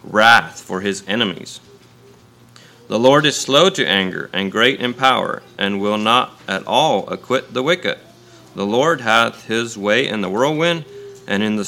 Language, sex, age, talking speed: English, male, 30-49, 170 wpm